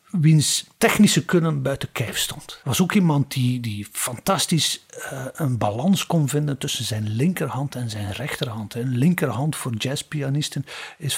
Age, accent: 50-69, Dutch